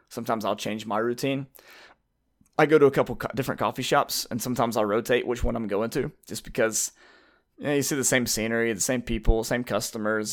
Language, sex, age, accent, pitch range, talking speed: English, male, 20-39, American, 110-135 Hz, 205 wpm